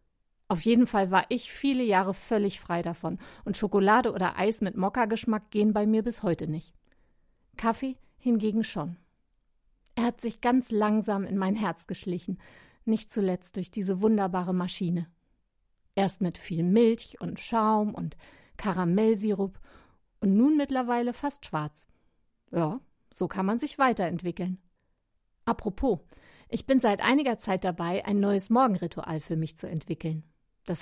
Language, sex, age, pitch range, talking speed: German, female, 50-69, 180-230 Hz, 145 wpm